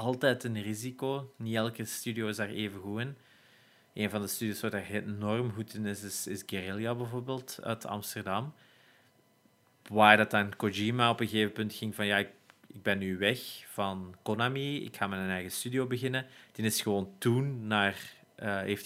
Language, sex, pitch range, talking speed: Dutch, male, 100-120 Hz, 190 wpm